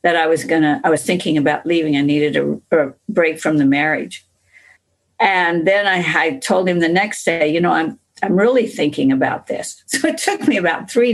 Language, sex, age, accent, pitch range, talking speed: English, female, 50-69, American, 150-205 Hz, 215 wpm